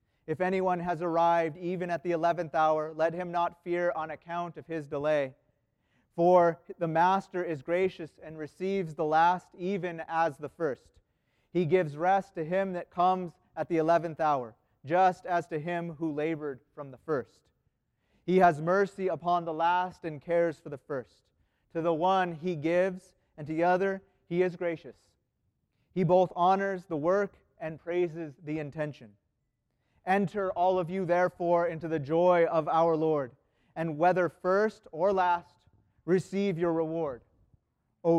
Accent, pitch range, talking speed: American, 155-180 Hz, 160 wpm